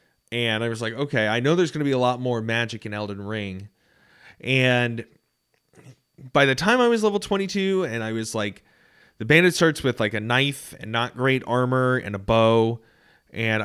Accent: American